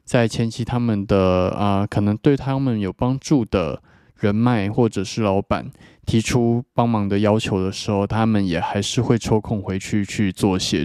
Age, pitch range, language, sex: 20-39, 100-115 Hz, Chinese, male